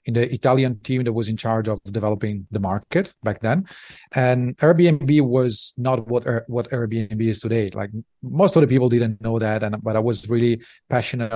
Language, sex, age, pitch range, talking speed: English, male, 40-59, 110-130 Hz, 195 wpm